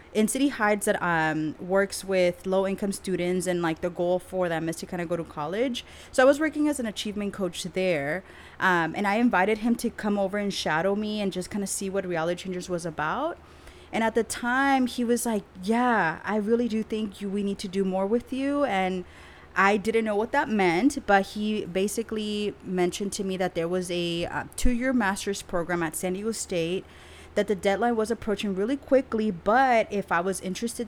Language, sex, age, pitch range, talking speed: English, female, 30-49, 180-220 Hz, 215 wpm